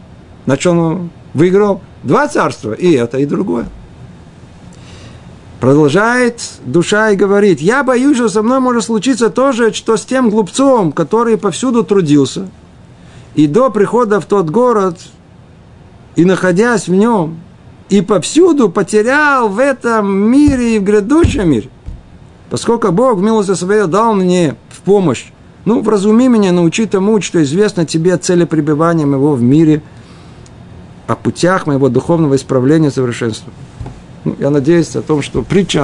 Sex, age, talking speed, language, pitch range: male, 50-69, 140 wpm, Russian, 130-205 Hz